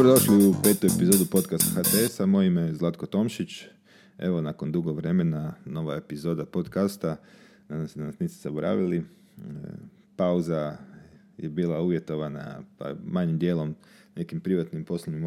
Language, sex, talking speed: Croatian, male, 135 wpm